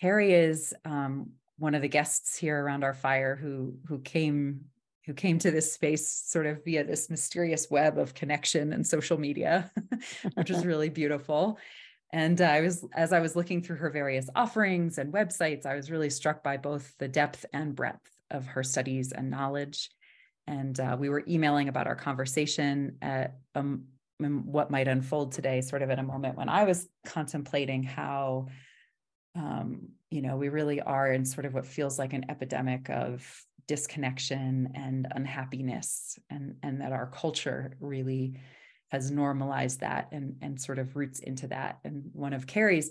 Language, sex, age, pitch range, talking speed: English, female, 30-49, 135-155 Hz, 175 wpm